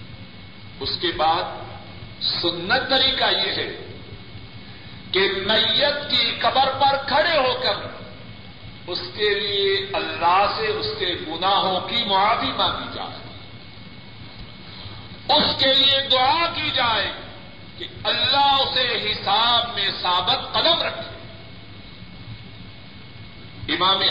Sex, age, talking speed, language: male, 50-69, 105 wpm, Urdu